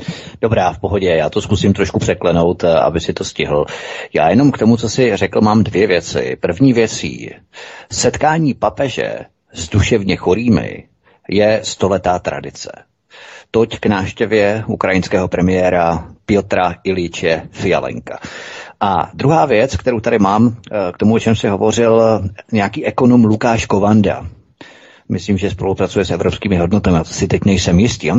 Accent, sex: native, male